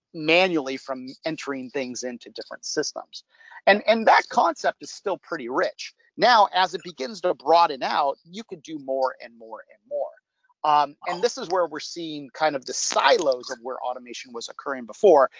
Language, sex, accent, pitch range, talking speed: English, male, American, 140-210 Hz, 185 wpm